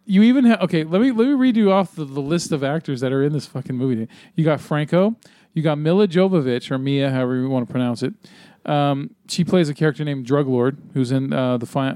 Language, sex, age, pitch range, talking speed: English, male, 40-59, 135-180 Hz, 235 wpm